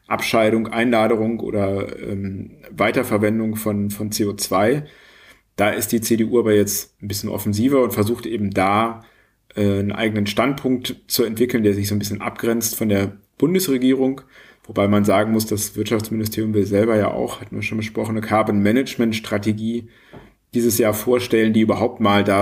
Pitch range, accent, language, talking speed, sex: 105-115 Hz, German, German, 160 wpm, male